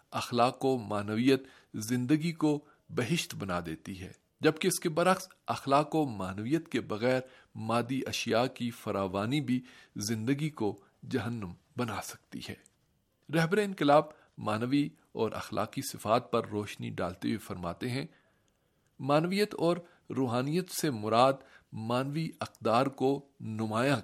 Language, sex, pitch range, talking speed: Urdu, male, 115-145 Hz, 125 wpm